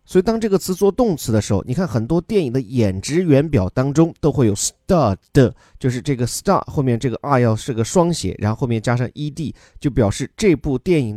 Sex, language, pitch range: male, Chinese, 115-160 Hz